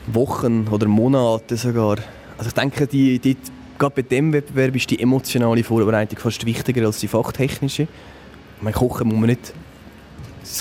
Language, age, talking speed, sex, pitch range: German, 20-39, 130 wpm, male, 110-130 Hz